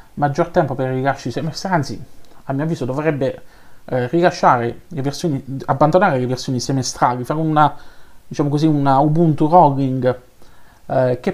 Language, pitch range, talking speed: Italian, 125-160 Hz, 150 wpm